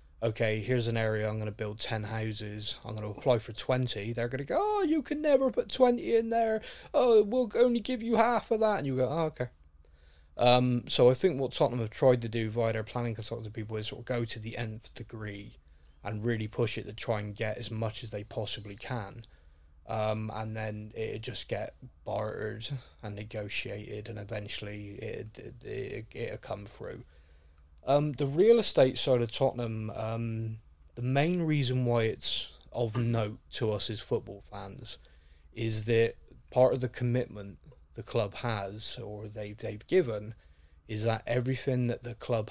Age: 20-39